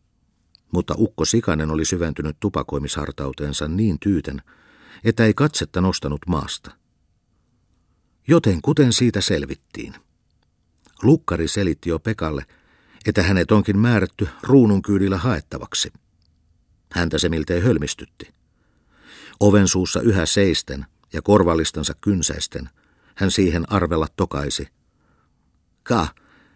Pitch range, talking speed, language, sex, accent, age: 80-110 Hz, 95 wpm, Finnish, male, native, 50-69